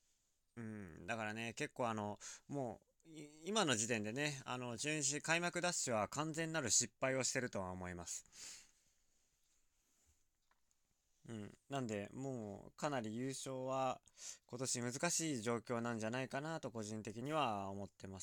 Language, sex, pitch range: Japanese, male, 115-145 Hz